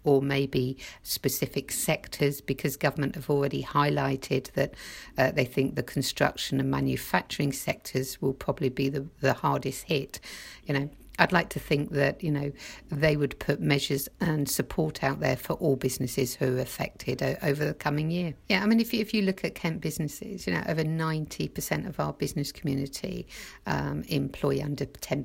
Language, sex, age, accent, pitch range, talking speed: English, female, 50-69, British, 135-160 Hz, 175 wpm